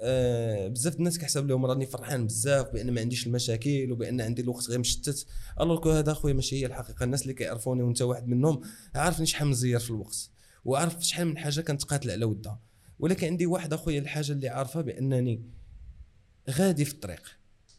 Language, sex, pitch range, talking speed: Arabic, male, 115-145 Hz, 180 wpm